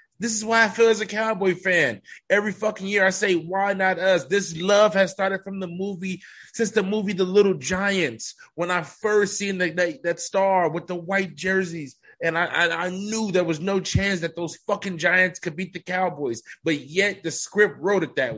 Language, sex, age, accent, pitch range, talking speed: English, male, 20-39, American, 150-195 Hz, 210 wpm